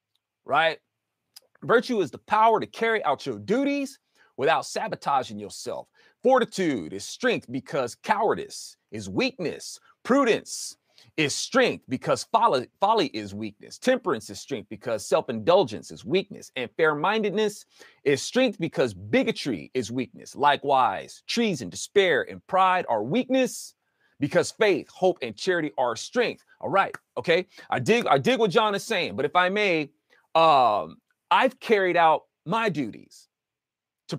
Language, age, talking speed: English, 40-59, 140 wpm